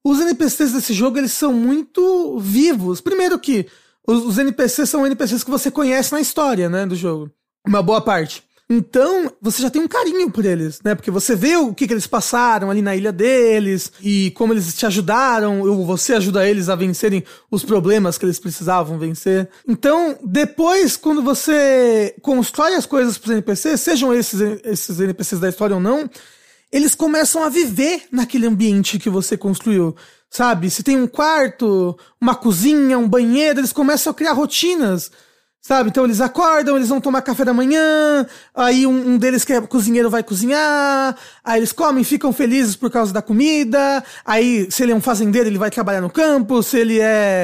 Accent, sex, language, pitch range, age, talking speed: Brazilian, male, English, 210-280 Hz, 20-39, 185 wpm